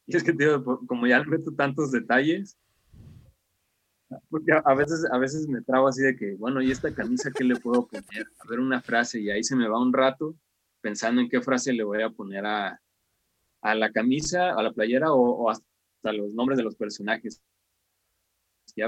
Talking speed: 200 wpm